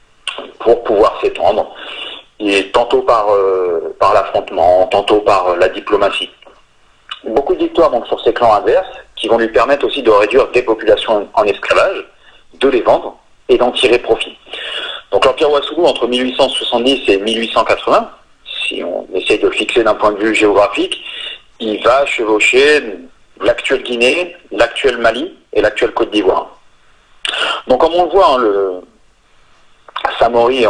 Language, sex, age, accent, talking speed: French, male, 40-59, French, 150 wpm